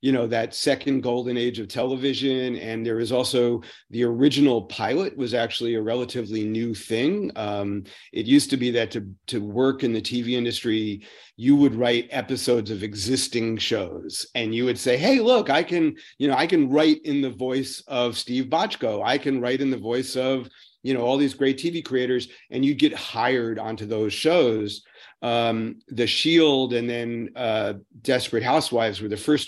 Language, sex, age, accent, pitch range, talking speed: English, male, 40-59, American, 115-135 Hz, 185 wpm